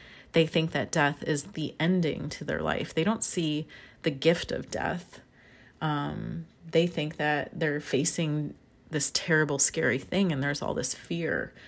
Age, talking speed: 30-49, 165 wpm